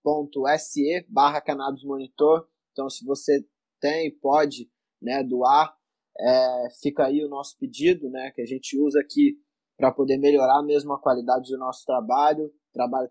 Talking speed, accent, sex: 145 wpm, Brazilian, male